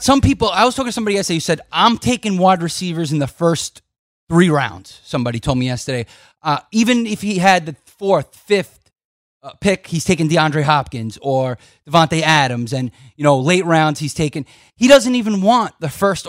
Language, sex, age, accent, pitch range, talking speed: English, male, 30-49, American, 150-195 Hz, 195 wpm